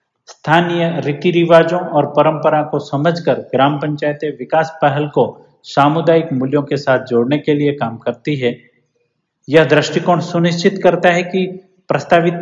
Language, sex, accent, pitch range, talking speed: Hindi, male, native, 140-165 Hz, 140 wpm